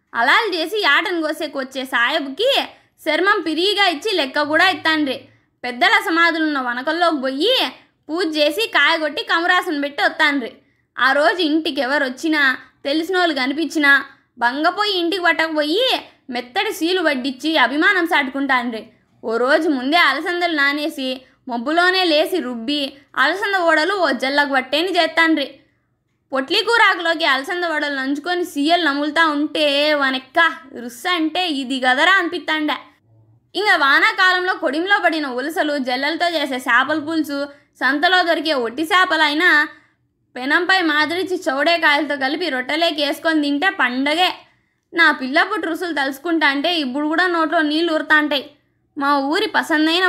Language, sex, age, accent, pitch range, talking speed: Telugu, female, 20-39, native, 280-345 Hz, 115 wpm